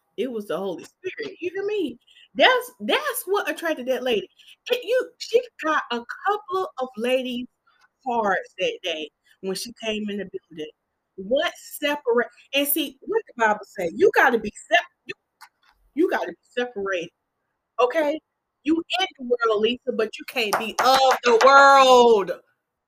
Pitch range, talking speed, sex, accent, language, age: 225-370 Hz, 170 wpm, female, American, English, 30-49